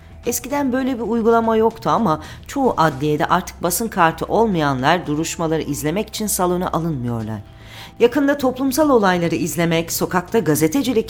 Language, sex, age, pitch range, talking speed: Turkish, female, 40-59, 140-215 Hz, 125 wpm